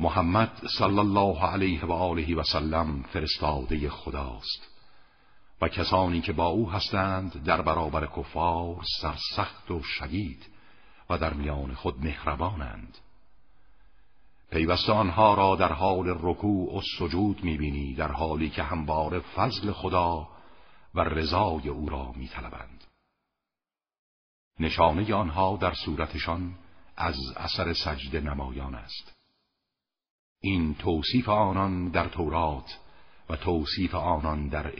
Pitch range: 75-90 Hz